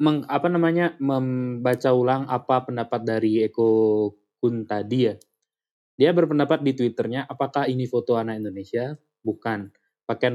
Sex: male